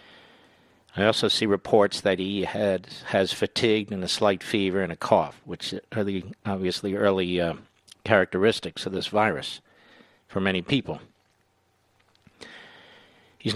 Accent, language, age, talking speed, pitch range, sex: American, English, 50-69, 135 wpm, 95-110 Hz, male